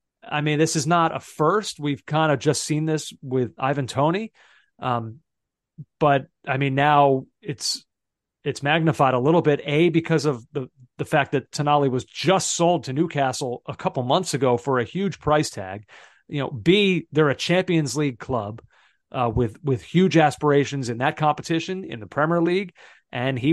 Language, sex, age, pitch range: English, male, 30-49, 135-170 Hz